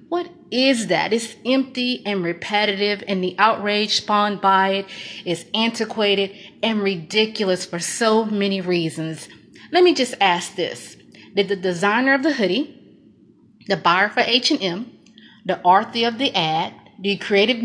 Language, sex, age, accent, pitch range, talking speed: English, female, 30-49, American, 200-250 Hz, 145 wpm